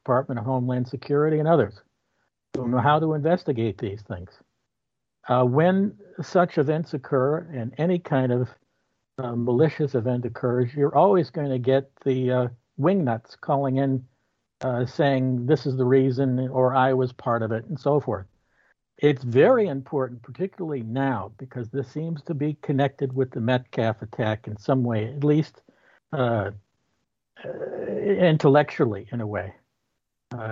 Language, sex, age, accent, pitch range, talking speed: English, male, 60-79, American, 125-155 Hz, 155 wpm